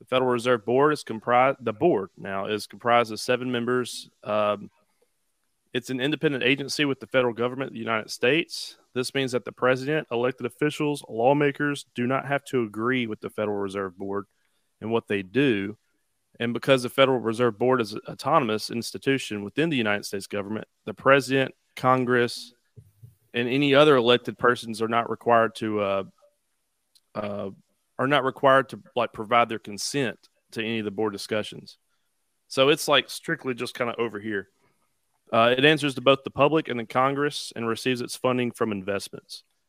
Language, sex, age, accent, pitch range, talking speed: English, male, 30-49, American, 110-135 Hz, 175 wpm